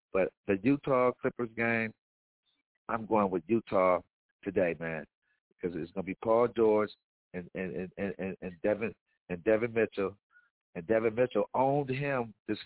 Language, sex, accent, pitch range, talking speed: English, male, American, 110-145 Hz, 150 wpm